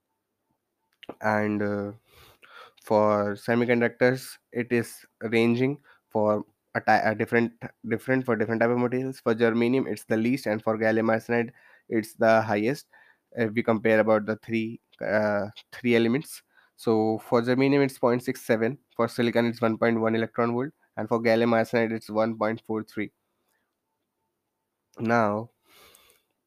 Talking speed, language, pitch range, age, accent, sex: 145 wpm, Hindi, 110-120 Hz, 20-39, native, male